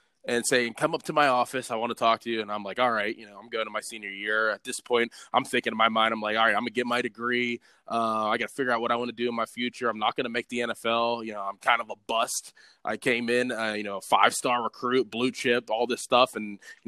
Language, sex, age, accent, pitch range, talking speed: English, male, 20-39, American, 115-130 Hz, 310 wpm